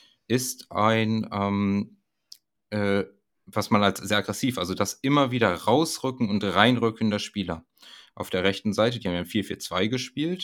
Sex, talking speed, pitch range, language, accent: male, 155 wpm, 100-120 Hz, German, German